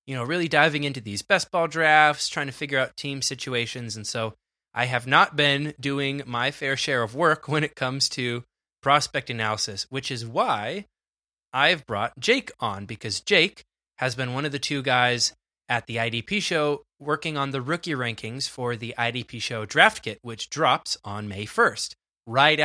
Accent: American